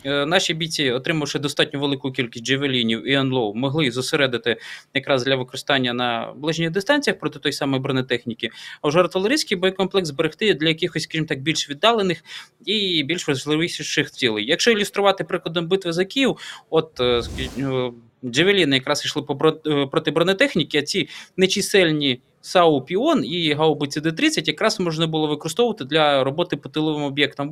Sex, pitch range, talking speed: male, 135-175 Hz, 140 wpm